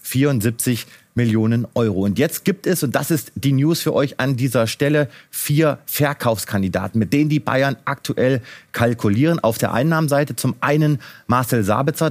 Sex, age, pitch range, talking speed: male, 30-49, 120-150 Hz, 160 wpm